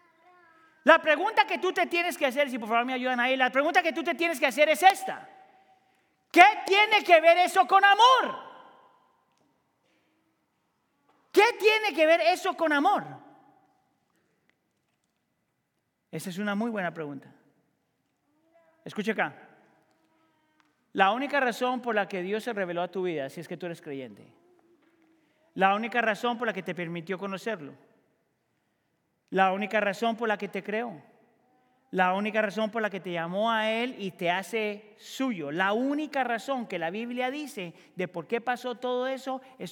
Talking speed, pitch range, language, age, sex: 165 wpm, 215-320 Hz, Spanish, 40-59, male